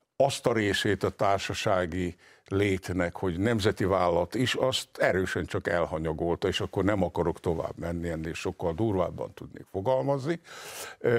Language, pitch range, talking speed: Hungarian, 90-115 Hz, 135 wpm